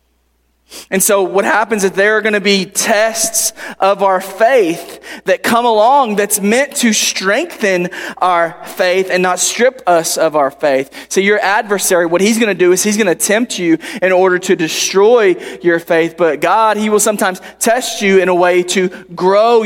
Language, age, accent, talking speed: English, 20-39, American, 190 wpm